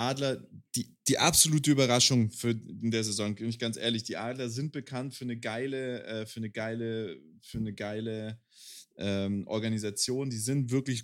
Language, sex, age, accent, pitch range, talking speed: German, male, 30-49, German, 105-135 Hz, 185 wpm